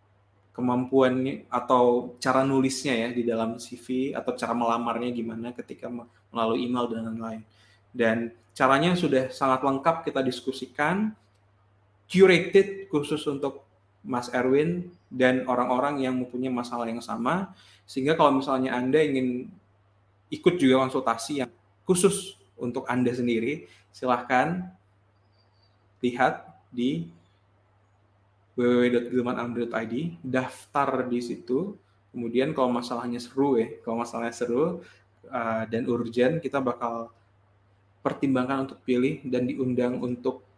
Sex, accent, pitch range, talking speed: male, native, 105-130 Hz, 110 wpm